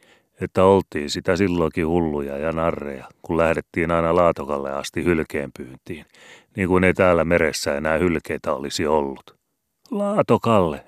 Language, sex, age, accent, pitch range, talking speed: Finnish, male, 30-49, native, 80-105 Hz, 125 wpm